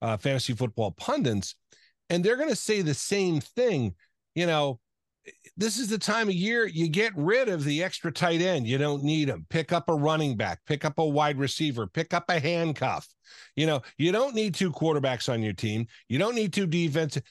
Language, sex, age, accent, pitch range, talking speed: English, male, 50-69, American, 135-185 Hz, 210 wpm